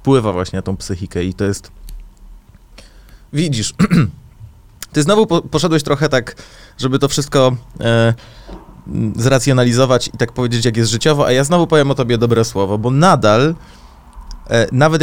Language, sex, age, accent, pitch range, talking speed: Polish, male, 20-39, native, 115-145 Hz, 140 wpm